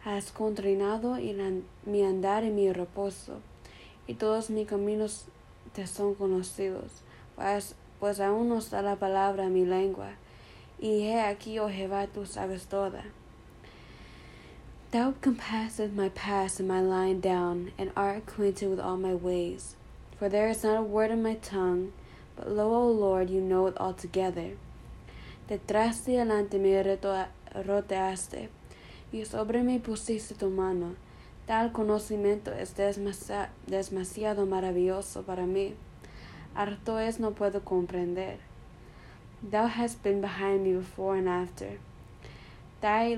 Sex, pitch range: female, 185-210 Hz